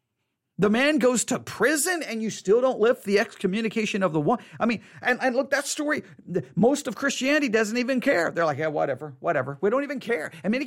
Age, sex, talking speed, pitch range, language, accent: 40-59, male, 220 wpm, 160-245 Hz, English, American